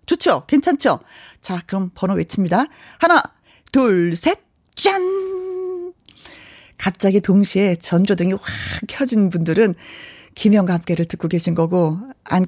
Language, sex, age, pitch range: Korean, female, 40-59, 180-280 Hz